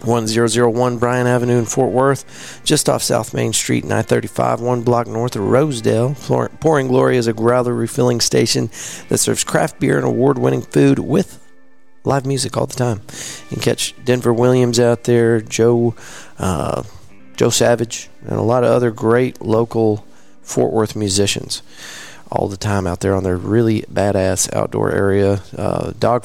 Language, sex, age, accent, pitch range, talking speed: English, male, 40-59, American, 110-130 Hz, 165 wpm